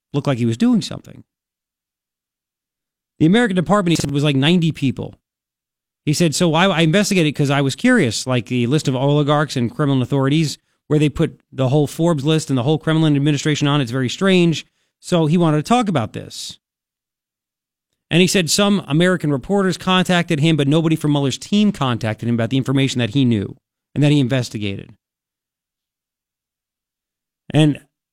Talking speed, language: 175 wpm, English